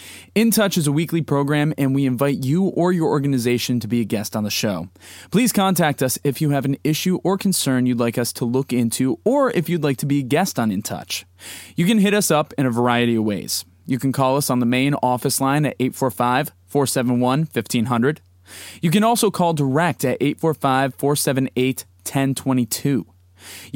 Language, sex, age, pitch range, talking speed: English, male, 20-39, 120-165 Hz, 195 wpm